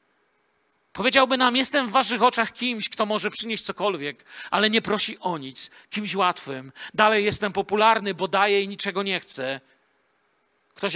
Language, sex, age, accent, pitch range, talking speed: Polish, male, 50-69, native, 165-210 Hz, 155 wpm